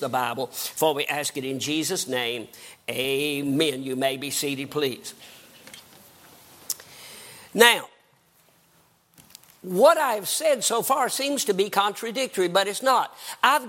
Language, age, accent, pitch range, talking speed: English, 50-69, American, 160-270 Hz, 125 wpm